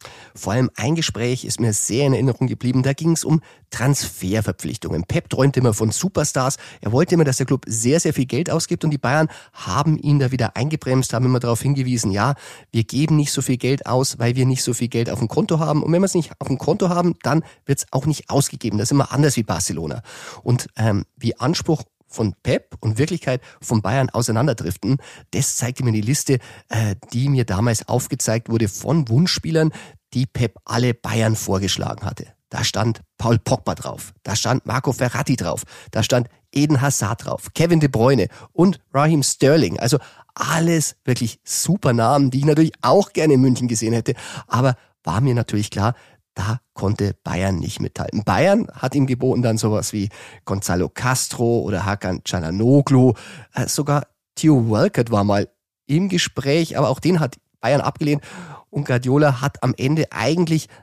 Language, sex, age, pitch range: German, male, 30-49, 110-145 Hz